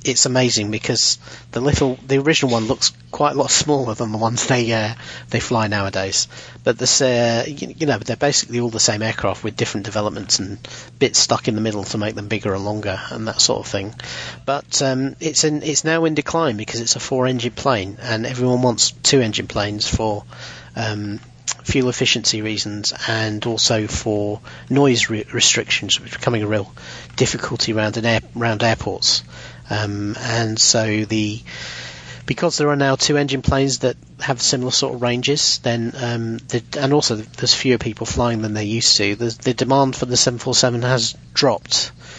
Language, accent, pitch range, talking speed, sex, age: English, British, 110-130 Hz, 190 wpm, male, 40-59